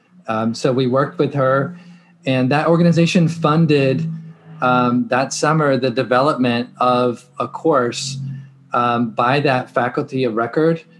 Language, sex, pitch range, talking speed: English, male, 125-150 Hz, 130 wpm